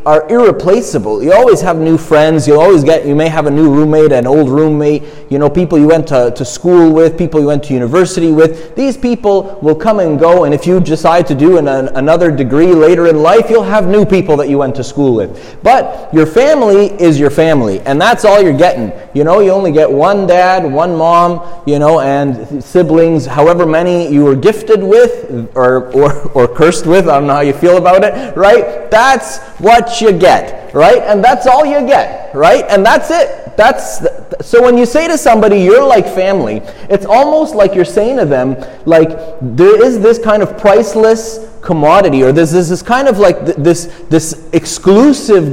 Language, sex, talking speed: English, male, 205 wpm